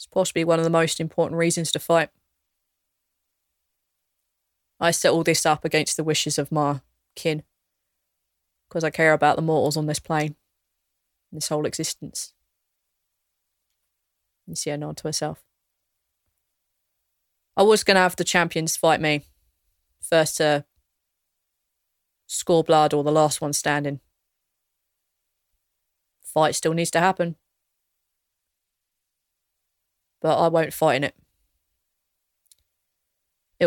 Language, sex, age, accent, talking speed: English, female, 20-39, British, 120 wpm